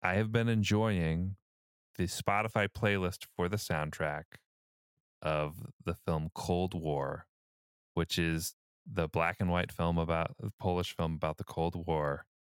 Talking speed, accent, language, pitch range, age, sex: 145 wpm, American, English, 80-105 Hz, 20-39, male